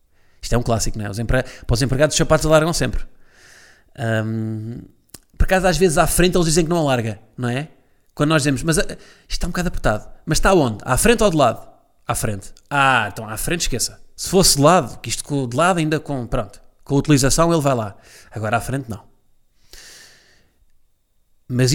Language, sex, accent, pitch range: Portuguese, male, Portuguese, 110-155 Hz